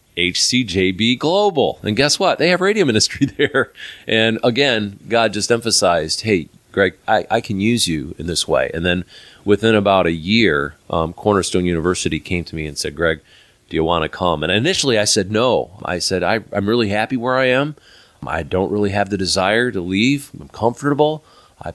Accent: American